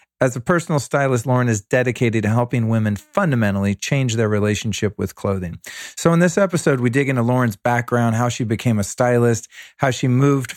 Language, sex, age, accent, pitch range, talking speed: English, male, 40-59, American, 110-140 Hz, 185 wpm